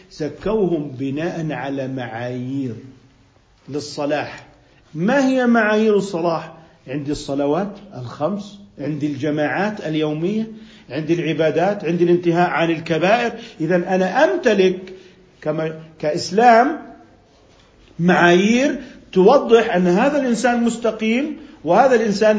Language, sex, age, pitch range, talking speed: Arabic, male, 50-69, 165-235 Hz, 90 wpm